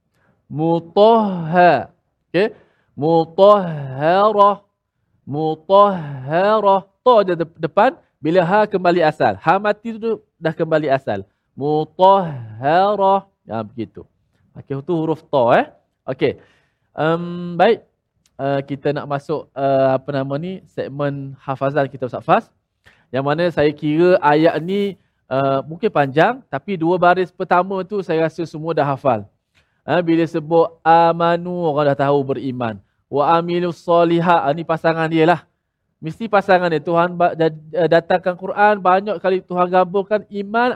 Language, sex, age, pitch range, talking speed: Malayalam, male, 20-39, 140-185 Hz, 125 wpm